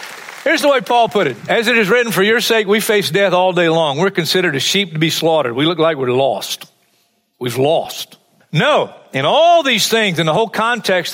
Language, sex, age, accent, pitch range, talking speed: English, male, 50-69, American, 165-230 Hz, 225 wpm